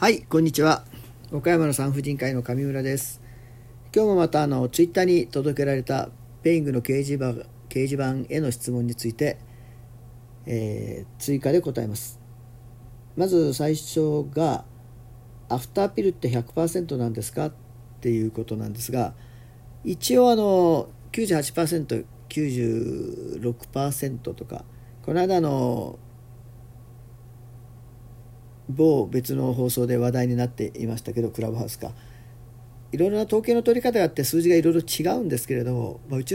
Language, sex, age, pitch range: Japanese, male, 40-59, 120-150 Hz